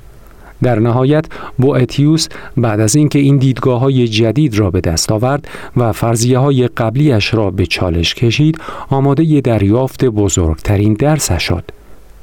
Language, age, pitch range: Persian, 50-69, 95-135 Hz